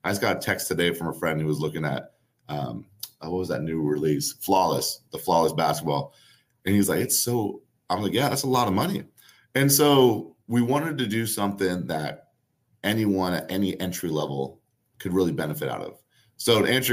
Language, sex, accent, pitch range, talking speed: English, male, American, 90-110 Hz, 200 wpm